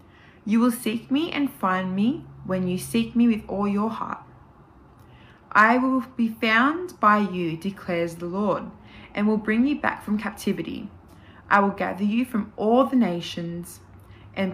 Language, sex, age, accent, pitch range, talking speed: English, female, 20-39, Australian, 180-230 Hz, 165 wpm